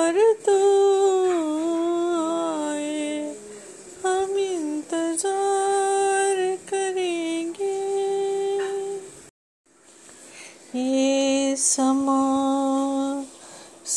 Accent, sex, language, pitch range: native, female, Hindi, 275-360 Hz